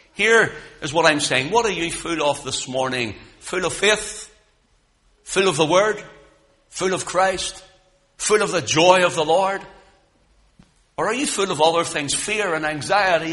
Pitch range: 145-195 Hz